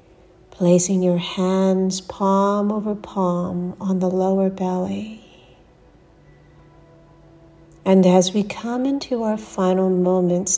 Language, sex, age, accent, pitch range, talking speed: English, female, 60-79, American, 180-205 Hz, 100 wpm